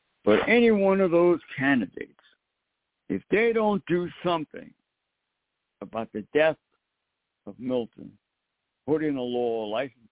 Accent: American